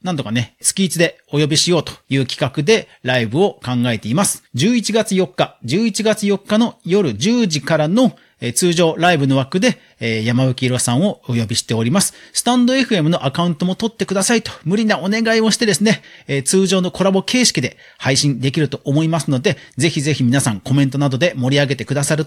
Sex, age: male, 40-59